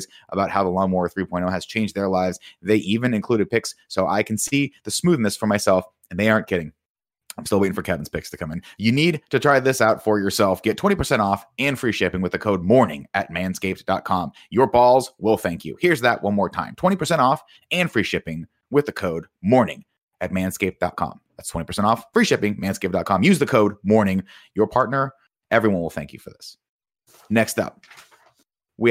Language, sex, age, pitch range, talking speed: English, male, 30-49, 95-115 Hz, 200 wpm